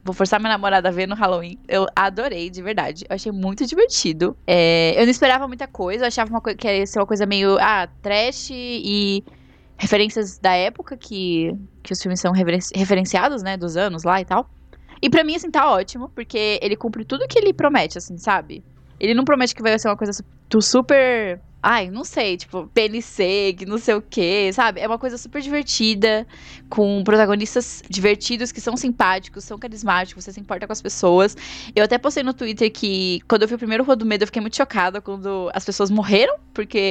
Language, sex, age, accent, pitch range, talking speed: Portuguese, female, 10-29, Brazilian, 195-245 Hz, 205 wpm